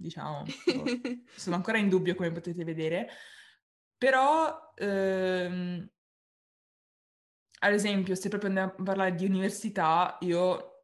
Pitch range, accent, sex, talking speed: 170-200 Hz, native, female, 110 wpm